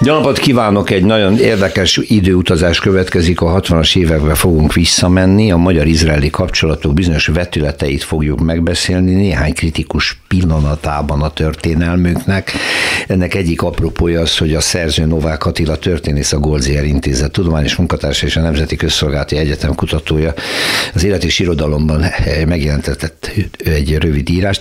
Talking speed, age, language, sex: 130 wpm, 60-79, Hungarian, male